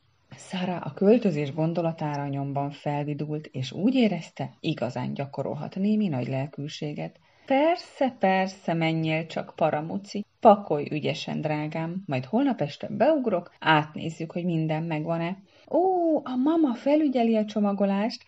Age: 30-49